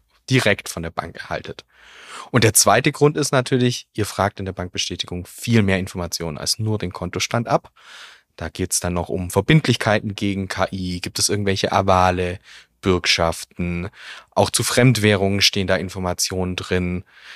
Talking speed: 155 wpm